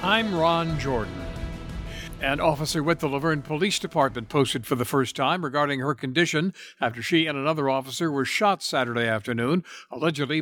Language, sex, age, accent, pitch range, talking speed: English, male, 60-79, American, 125-160 Hz, 160 wpm